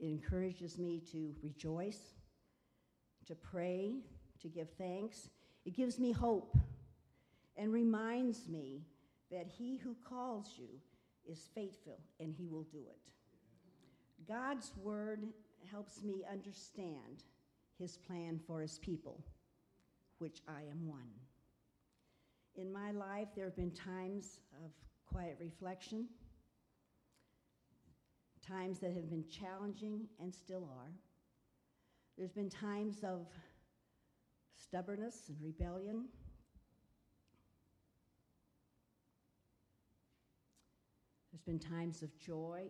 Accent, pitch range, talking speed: American, 155-200 Hz, 105 wpm